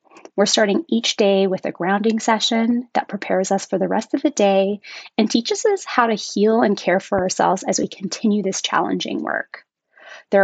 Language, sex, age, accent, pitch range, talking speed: English, female, 20-39, American, 195-260 Hz, 195 wpm